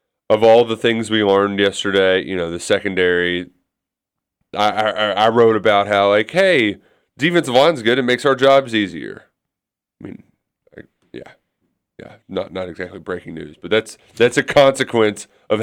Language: English